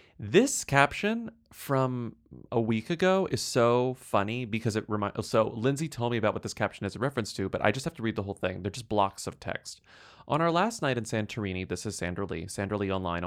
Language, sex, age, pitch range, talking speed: English, male, 30-49, 100-145 Hz, 230 wpm